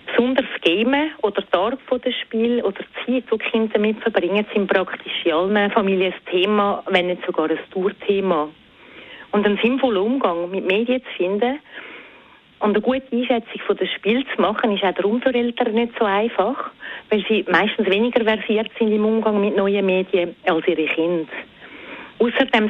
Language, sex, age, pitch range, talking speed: German, female, 40-59, 190-235 Hz, 175 wpm